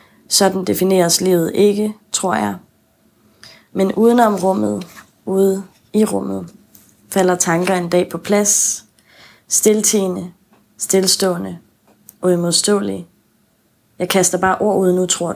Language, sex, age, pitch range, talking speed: Danish, female, 20-39, 175-200 Hz, 110 wpm